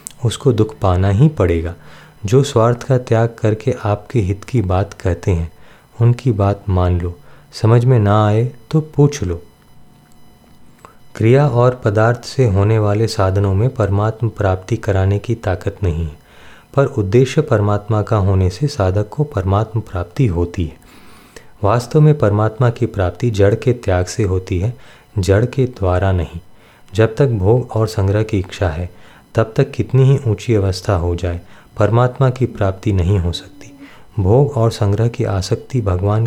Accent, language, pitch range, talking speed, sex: native, Hindi, 95-120 Hz, 160 wpm, male